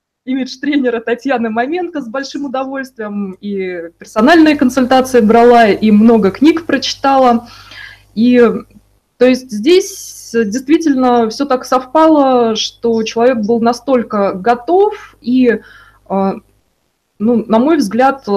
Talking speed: 110 wpm